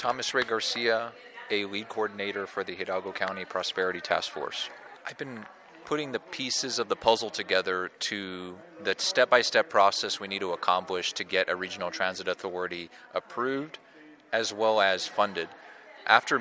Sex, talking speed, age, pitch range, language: male, 155 wpm, 30-49, 95-115 Hz, English